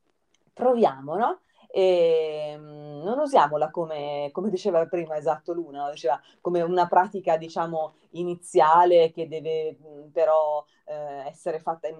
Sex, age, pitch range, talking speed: female, 30-49, 150-185 Hz, 115 wpm